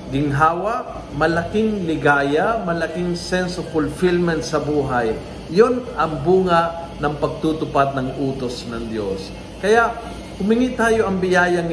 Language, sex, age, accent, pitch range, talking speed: Filipino, male, 50-69, native, 155-205 Hz, 120 wpm